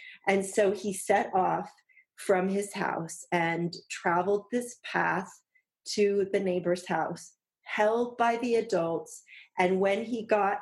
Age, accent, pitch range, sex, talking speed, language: 30-49, American, 175-205 Hz, female, 135 wpm, English